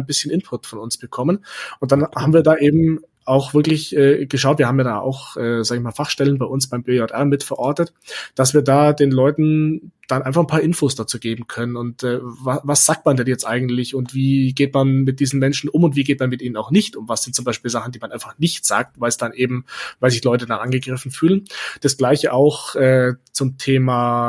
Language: German